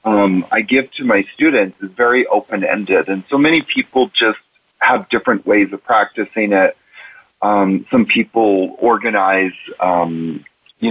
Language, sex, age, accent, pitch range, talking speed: English, male, 40-59, American, 100-135 Hz, 145 wpm